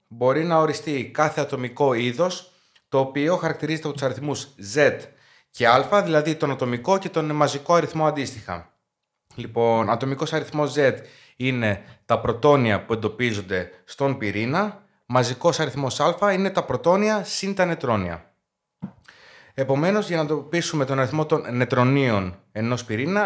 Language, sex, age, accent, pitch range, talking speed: Greek, male, 30-49, native, 120-165 Hz, 135 wpm